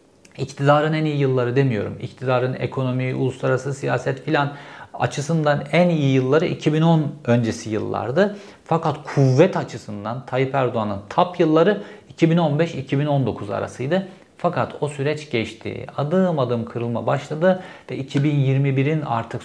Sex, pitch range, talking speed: male, 120-155 Hz, 115 wpm